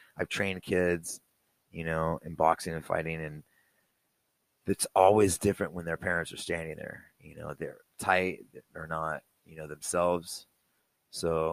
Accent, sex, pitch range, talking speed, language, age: American, male, 80-100 Hz, 150 wpm, English, 30-49